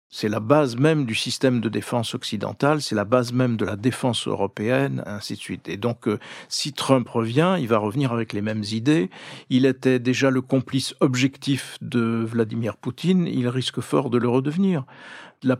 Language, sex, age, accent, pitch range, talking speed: French, male, 50-69, French, 115-140 Hz, 185 wpm